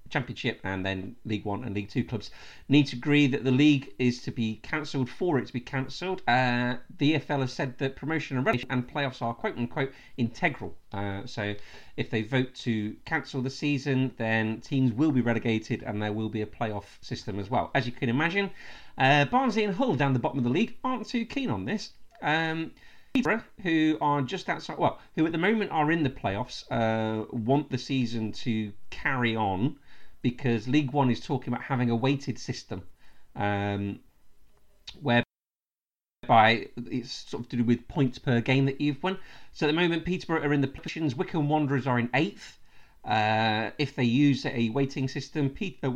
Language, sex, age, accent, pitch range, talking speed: English, male, 40-59, British, 115-150 Hz, 190 wpm